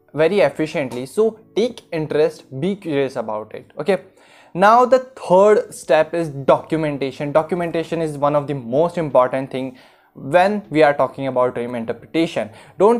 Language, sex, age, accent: Hindi, male, 20-39, native